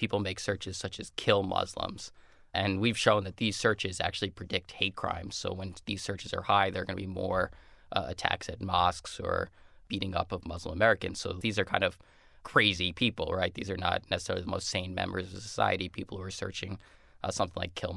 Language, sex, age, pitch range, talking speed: English, male, 20-39, 90-100 Hz, 215 wpm